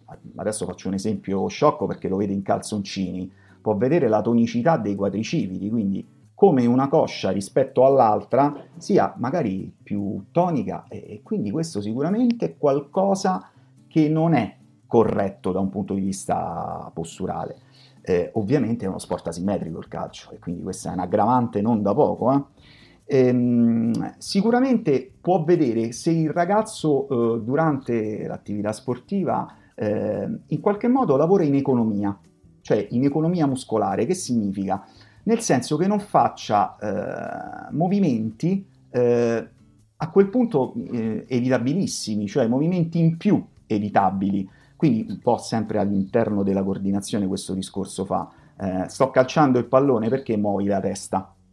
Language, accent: Italian, native